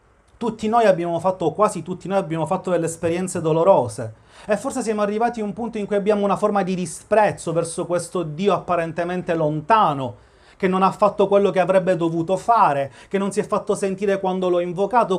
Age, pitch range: 30-49, 165-205 Hz